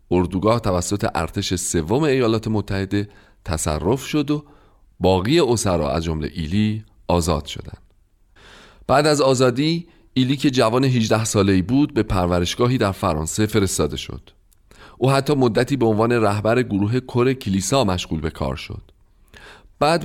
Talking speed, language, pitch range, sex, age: 135 wpm, Persian, 90-135 Hz, male, 40-59